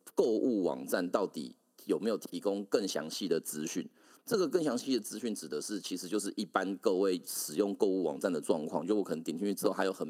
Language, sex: Chinese, male